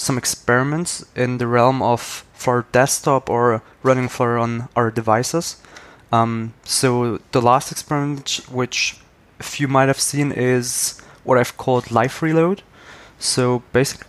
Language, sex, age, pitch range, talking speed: English, male, 20-39, 115-135 Hz, 140 wpm